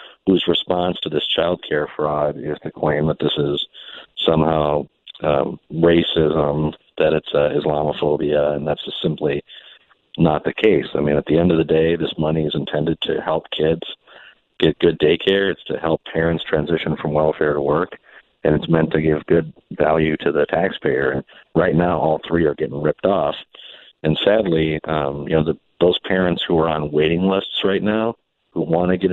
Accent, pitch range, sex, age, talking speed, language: American, 75-90 Hz, male, 50-69, 185 wpm, English